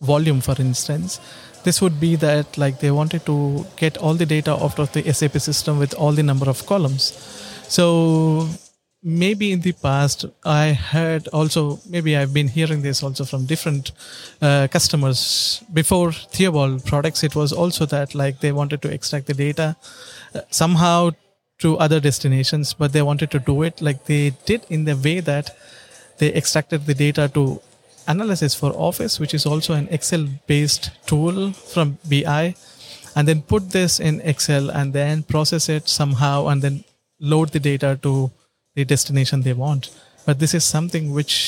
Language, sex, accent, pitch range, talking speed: Dutch, male, Indian, 140-160 Hz, 170 wpm